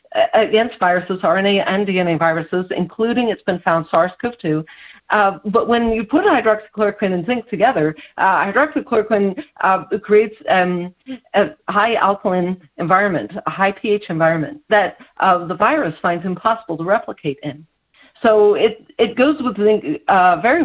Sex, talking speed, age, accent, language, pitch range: female, 145 wpm, 50-69, American, English, 170-215 Hz